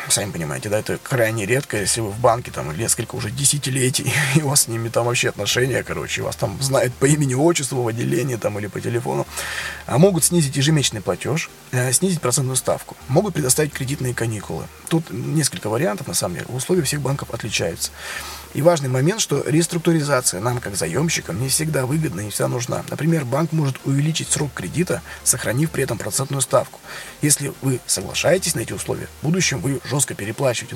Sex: male